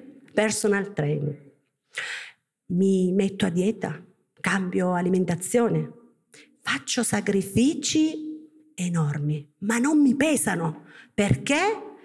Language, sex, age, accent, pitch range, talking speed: Italian, female, 50-69, native, 165-230 Hz, 80 wpm